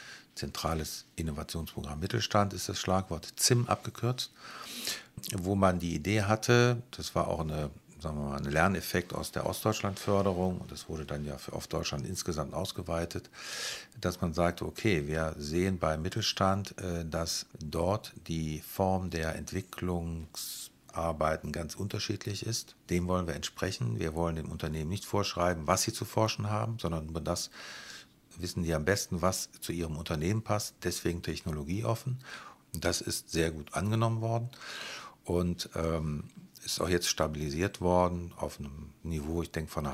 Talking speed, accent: 145 wpm, German